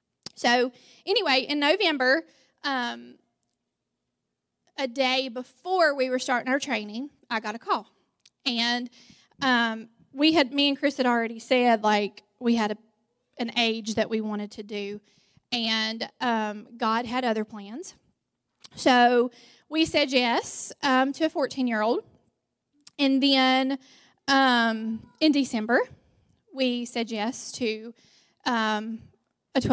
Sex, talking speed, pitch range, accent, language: female, 125 wpm, 235-280 Hz, American, English